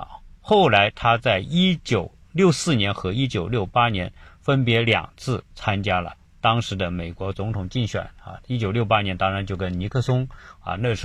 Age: 50-69